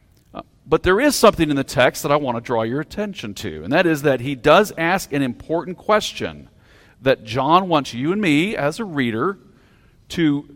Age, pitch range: 50-69, 115-160 Hz